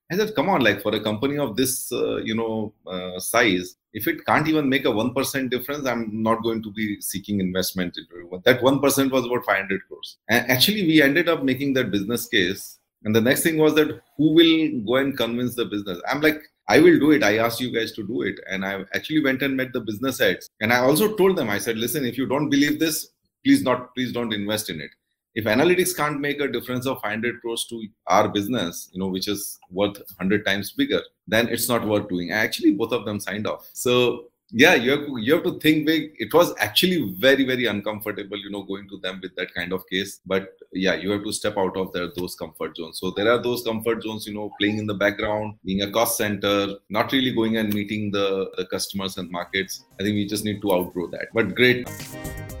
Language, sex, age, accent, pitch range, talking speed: English, male, 30-49, Indian, 100-135 Hz, 235 wpm